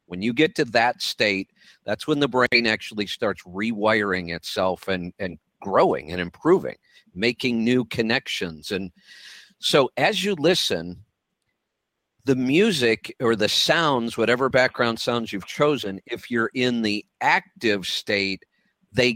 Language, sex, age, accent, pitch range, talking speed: English, male, 50-69, American, 105-130 Hz, 140 wpm